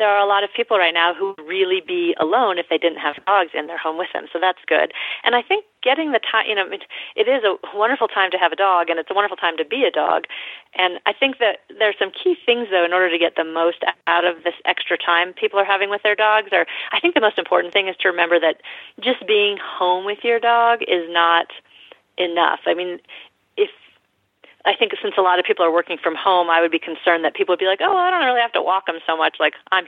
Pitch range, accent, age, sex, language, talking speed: 170-240 Hz, American, 30-49, female, English, 265 wpm